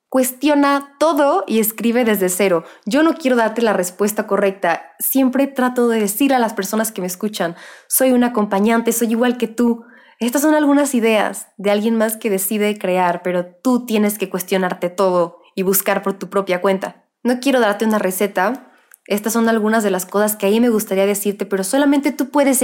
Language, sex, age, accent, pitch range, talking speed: Spanish, female, 20-39, Mexican, 195-245 Hz, 195 wpm